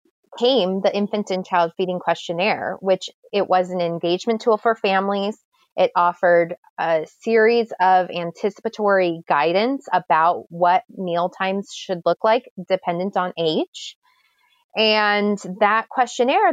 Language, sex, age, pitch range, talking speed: English, female, 20-39, 180-225 Hz, 125 wpm